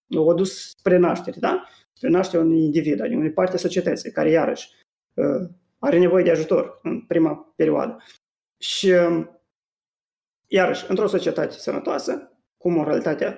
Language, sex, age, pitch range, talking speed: Romanian, male, 20-39, 165-195 Hz, 135 wpm